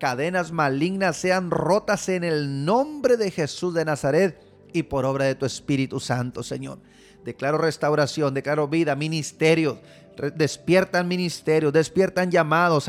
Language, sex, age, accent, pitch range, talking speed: Spanish, male, 30-49, Mexican, 155-195 Hz, 130 wpm